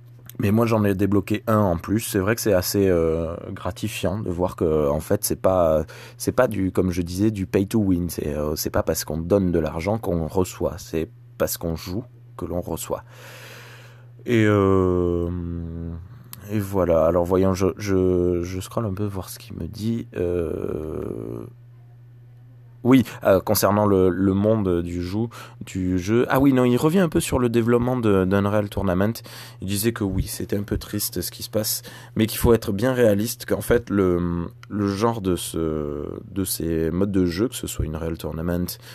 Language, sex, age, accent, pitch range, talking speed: French, male, 20-39, French, 85-115 Hz, 195 wpm